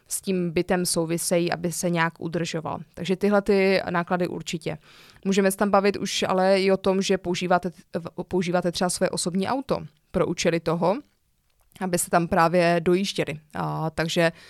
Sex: female